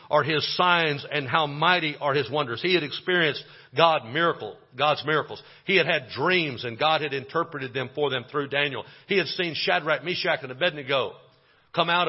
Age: 50-69